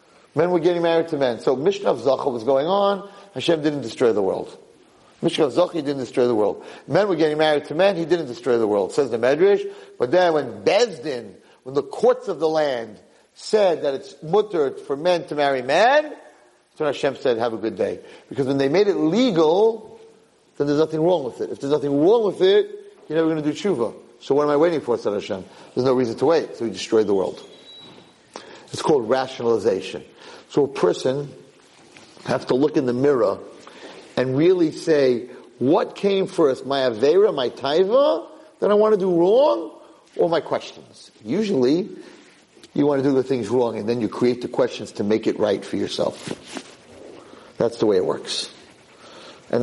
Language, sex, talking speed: English, male, 200 wpm